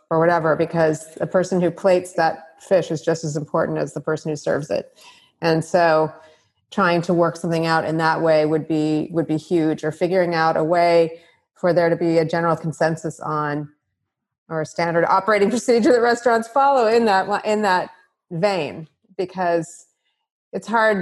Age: 30-49